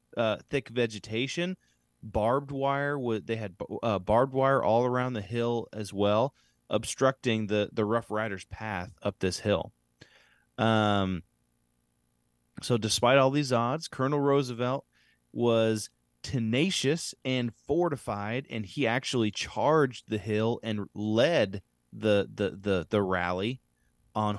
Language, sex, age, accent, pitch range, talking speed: English, male, 30-49, American, 100-140 Hz, 130 wpm